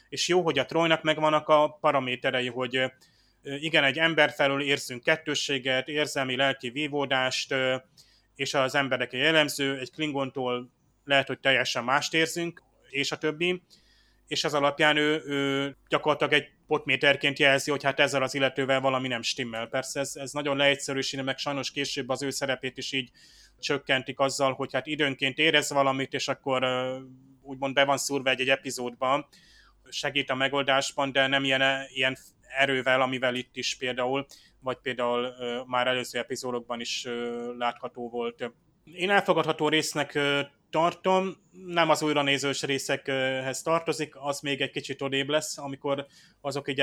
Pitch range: 130-150 Hz